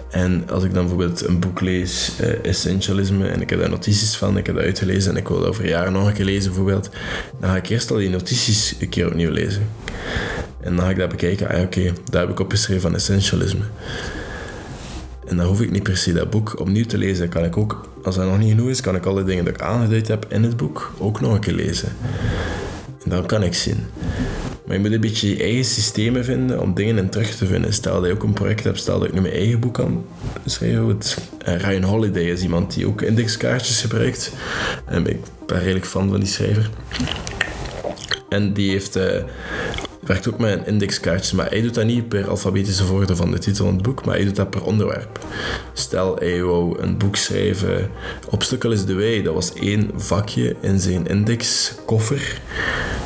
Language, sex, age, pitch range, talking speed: Dutch, male, 20-39, 90-110 Hz, 215 wpm